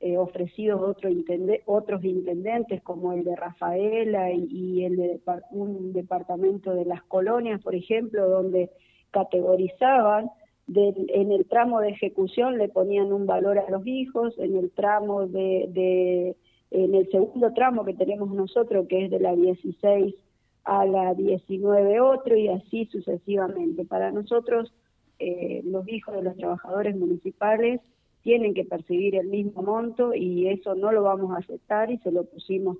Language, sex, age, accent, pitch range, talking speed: Spanish, female, 40-59, Argentinian, 185-210 Hz, 150 wpm